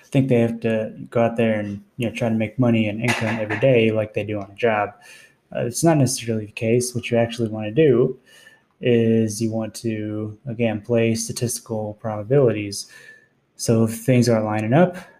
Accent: American